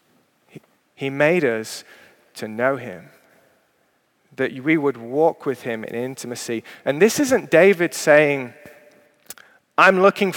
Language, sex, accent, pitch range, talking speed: English, male, British, 150-180 Hz, 120 wpm